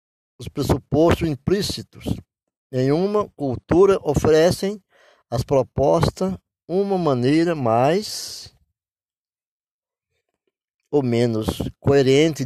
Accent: Brazilian